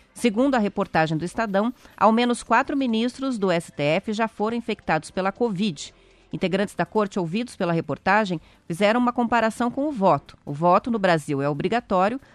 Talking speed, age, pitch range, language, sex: 165 wpm, 30-49, 170-230 Hz, Portuguese, female